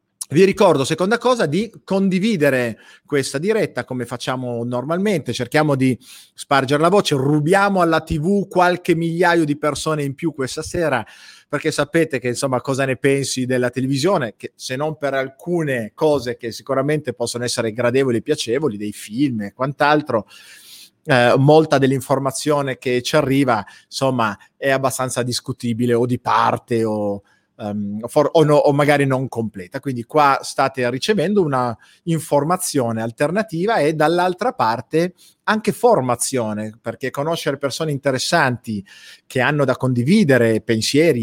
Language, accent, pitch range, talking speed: Italian, native, 125-160 Hz, 135 wpm